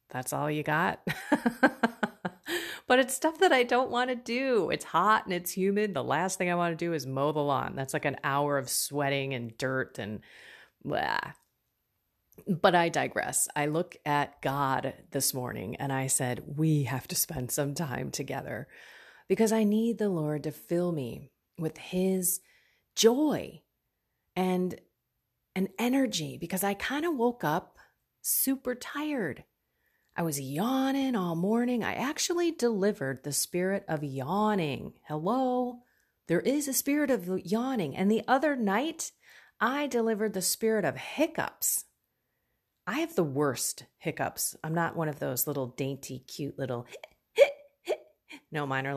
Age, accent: 30-49, American